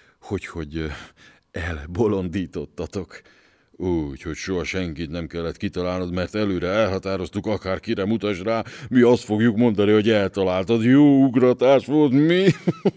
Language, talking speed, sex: Hungarian, 115 wpm, male